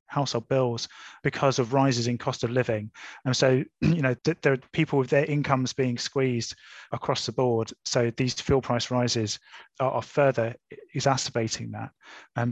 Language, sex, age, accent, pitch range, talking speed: English, male, 20-39, British, 120-145 Hz, 175 wpm